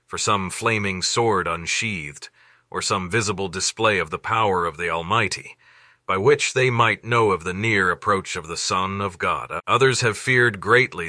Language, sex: English, male